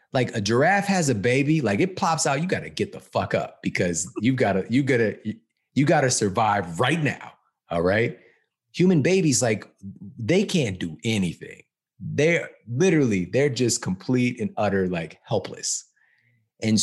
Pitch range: 95-125 Hz